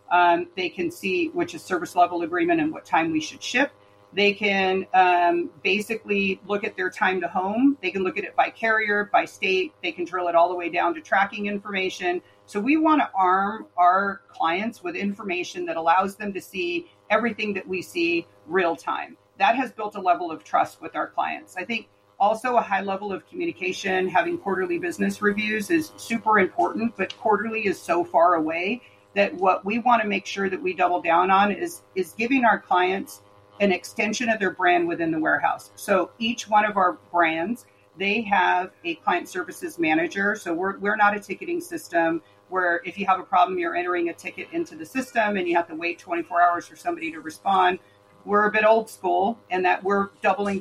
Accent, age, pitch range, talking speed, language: American, 40-59, 180-230 Hz, 205 wpm, English